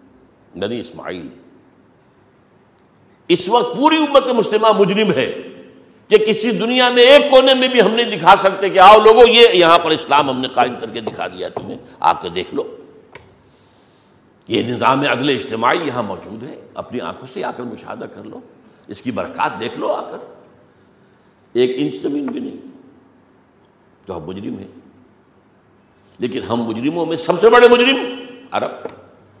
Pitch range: 190-265 Hz